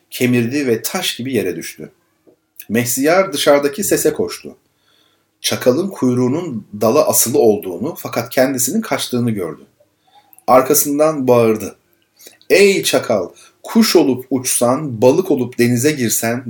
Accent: native